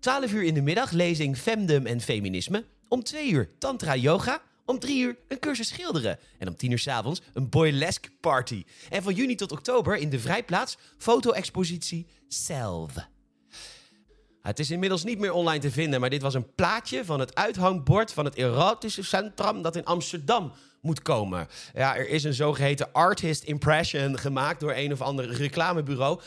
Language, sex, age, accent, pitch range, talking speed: Dutch, male, 40-59, Dutch, 140-200 Hz, 175 wpm